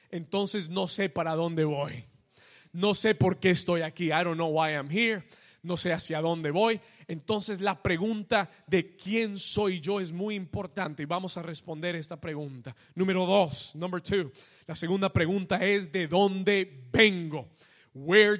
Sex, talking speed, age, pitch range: male, 165 wpm, 30-49, 175-225 Hz